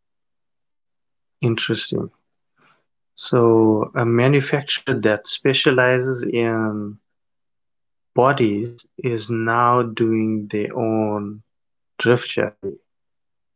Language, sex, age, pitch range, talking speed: English, male, 30-49, 110-130 Hz, 65 wpm